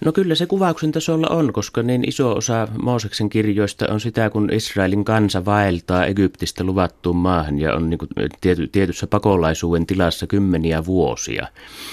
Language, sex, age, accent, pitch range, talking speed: Finnish, male, 30-49, native, 75-105 Hz, 145 wpm